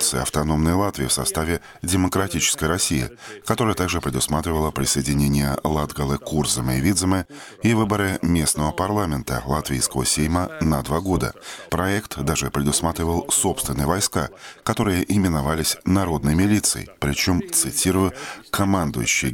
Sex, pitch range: male, 75-95 Hz